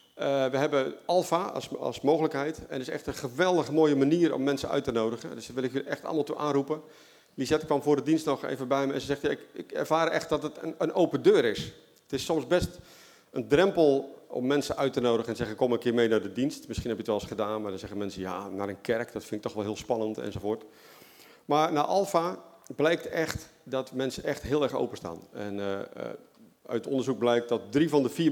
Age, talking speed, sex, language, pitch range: 40-59, 250 wpm, male, Dutch, 120-155 Hz